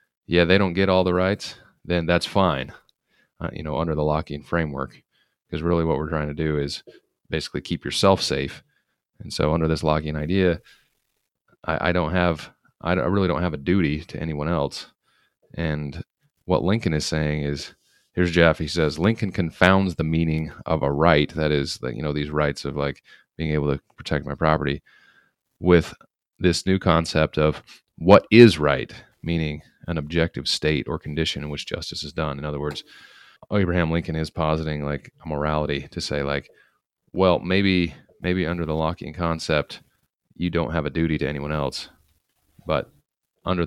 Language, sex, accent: English, male, American